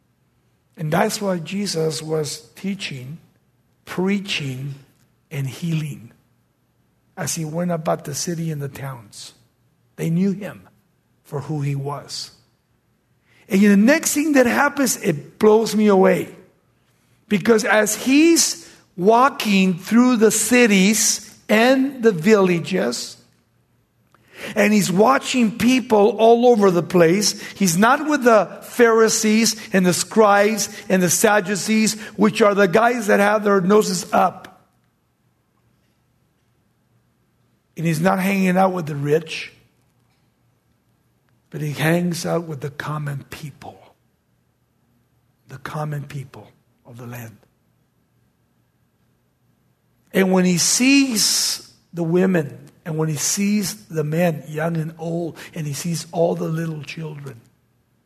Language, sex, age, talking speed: English, male, 60-79, 120 wpm